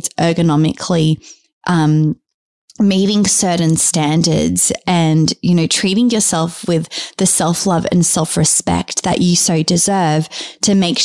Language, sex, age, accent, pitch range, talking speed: English, female, 20-39, Australian, 165-190 Hz, 115 wpm